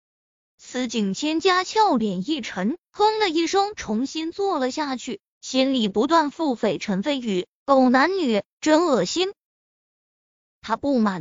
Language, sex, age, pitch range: Chinese, female, 20-39, 255-360 Hz